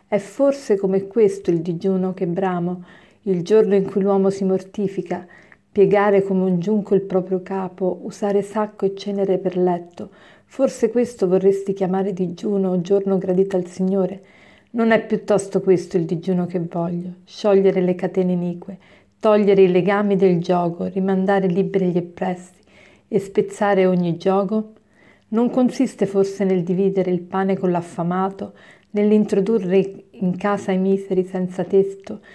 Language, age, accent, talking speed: Italian, 40-59, native, 145 wpm